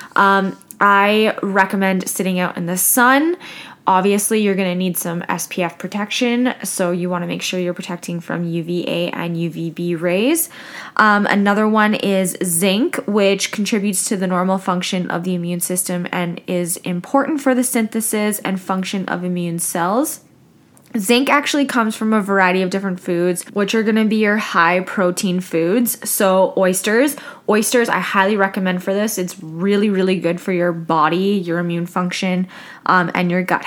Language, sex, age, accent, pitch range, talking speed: English, female, 10-29, American, 180-220 Hz, 170 wpm